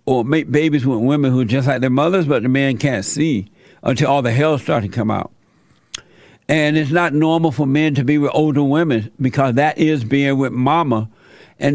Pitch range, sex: 140-175 Hz, male